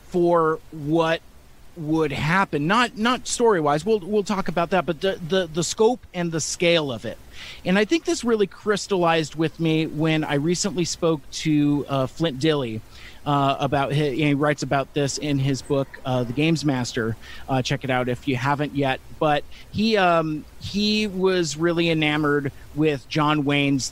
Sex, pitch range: male, 135-165 Hz